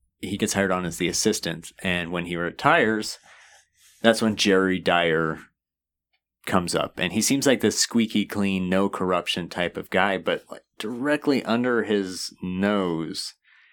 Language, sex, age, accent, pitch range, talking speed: English, male, 30-49, American, 90-110 Hz, 155 wpm